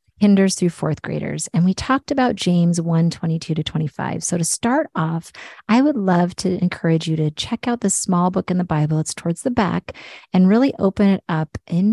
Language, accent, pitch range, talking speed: English, American, 165-205 Hz, 205 wpm